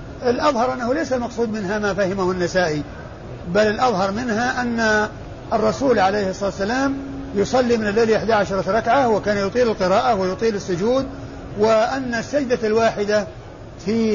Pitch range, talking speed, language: 185-240 Hz, 125 wpm, Arabic